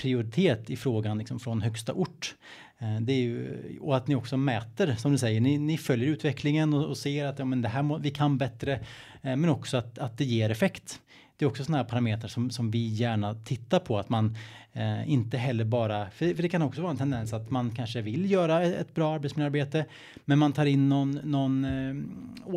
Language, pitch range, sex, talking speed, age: Swedish, 115-140 Hz, male, 225 wpm, 30-49